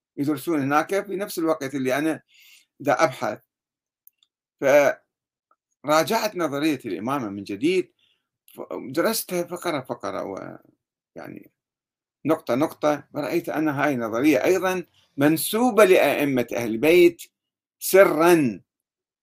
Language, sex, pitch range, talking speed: Arabic, male, 140-210 Hz, 95 wpm